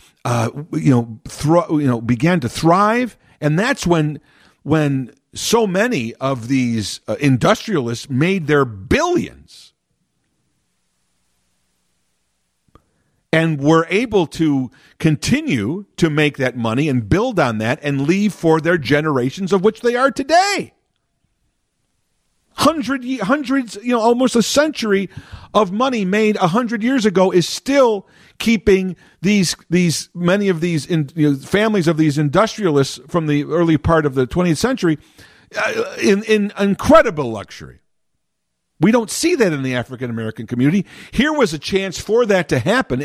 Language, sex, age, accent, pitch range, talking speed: English, male, 50-69, American, 130-205 Hz, 145 wpm